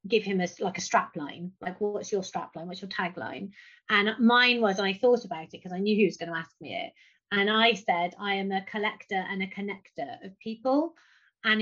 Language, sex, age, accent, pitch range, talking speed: English, female, 30-49, British, 195-235 Hz, 230 wpm